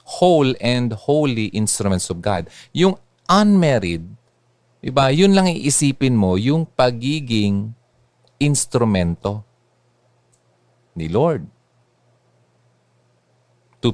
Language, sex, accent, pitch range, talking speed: Filipino, male, native, 105-165 Hz, 75 wpm